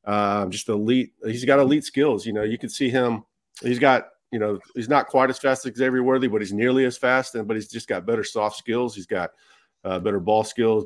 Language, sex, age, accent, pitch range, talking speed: English, male, 30-49, American, 105-130 Hz, 245 wpm